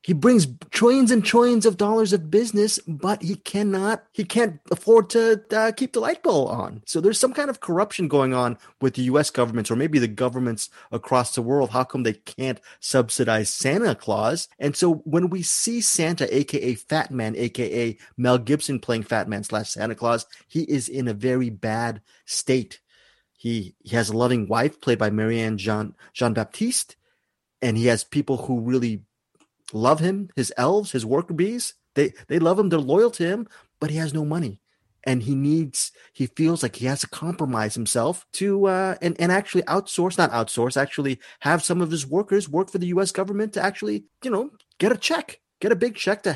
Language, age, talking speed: English, 30-49, 195 wpm